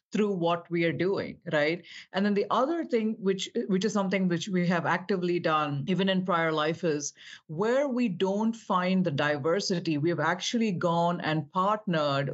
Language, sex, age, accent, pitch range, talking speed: English, female, 50-69, Indian, 165-210 Hz, 180 wpm